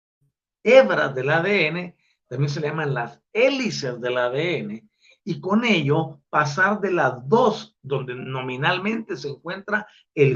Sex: male